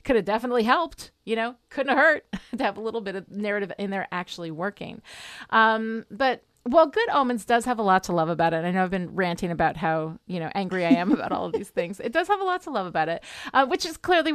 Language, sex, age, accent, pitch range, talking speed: English, female, 30-49, American, 180-245 Hz, 260 wpm